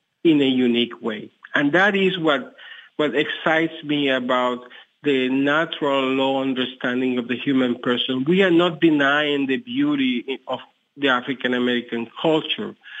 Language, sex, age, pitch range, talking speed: English, male, 50-69, 125-155 Hz, 140 wpm